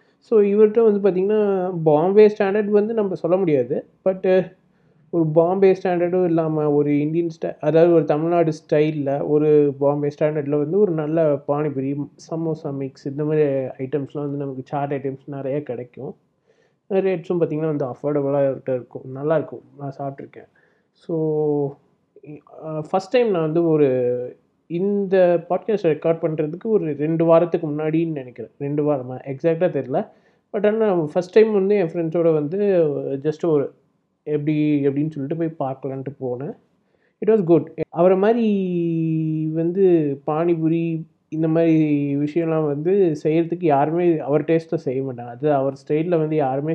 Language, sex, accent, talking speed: Tamil, male, native, 135 wpm